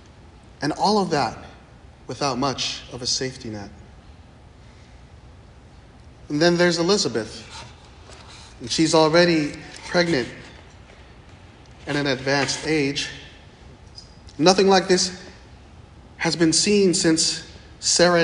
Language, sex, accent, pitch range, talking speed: English, male, American, 125-175 Hz, 100 wpm